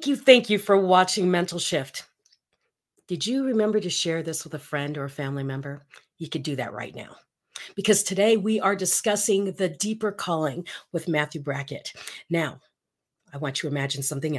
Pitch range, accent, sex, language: 155-225 Hz, American, female, English